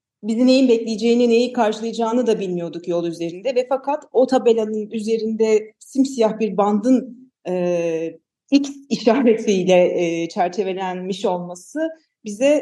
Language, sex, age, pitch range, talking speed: Turkish, female, 40-59, 185-230 Hz, 115 wpm